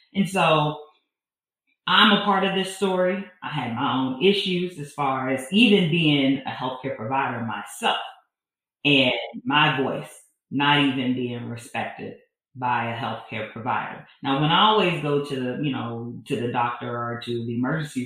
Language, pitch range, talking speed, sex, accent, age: English, 130-155 Hz, 165 wpm, female, American, 40-59